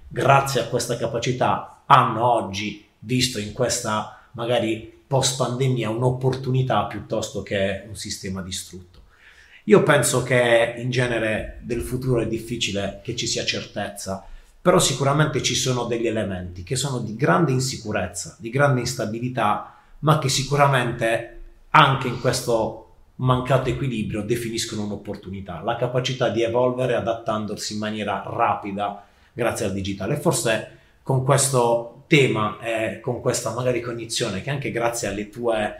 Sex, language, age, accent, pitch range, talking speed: male, Italian, 30-49, native, 105-125 Hz, 135 wpm